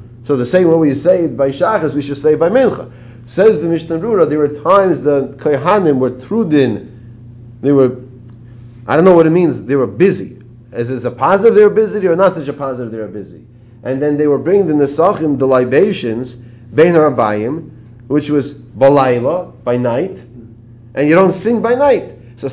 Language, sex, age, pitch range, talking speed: English, male, 40-59, 120-155 Hz, 195 wpm